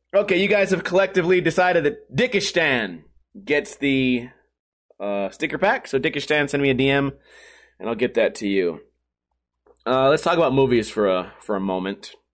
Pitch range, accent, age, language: 130-195 Hz, American, 30-49, English